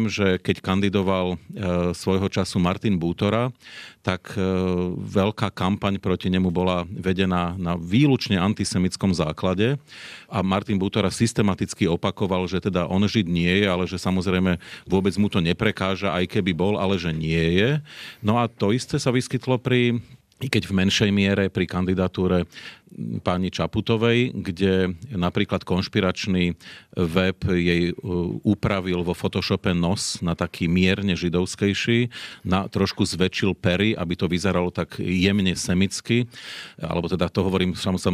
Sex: male